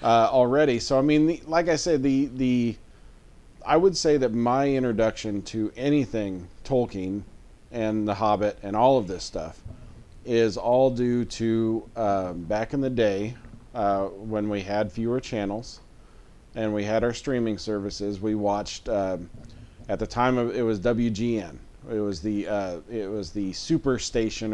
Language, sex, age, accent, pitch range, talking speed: English, male, 40-59, American, 105-130 Hz, 165 wpm